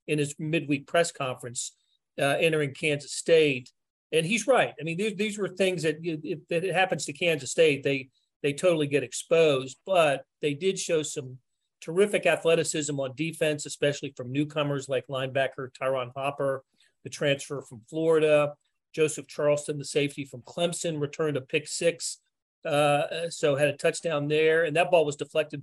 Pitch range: 140-170 Hz